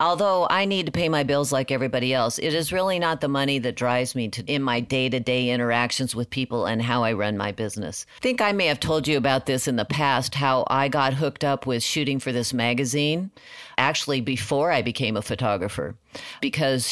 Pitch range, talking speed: 125-150 Hz, 215 wpm